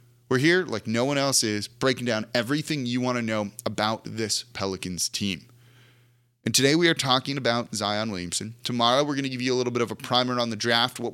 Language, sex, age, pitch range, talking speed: English, male, 30-49, 115-145 Hz, 225 wpm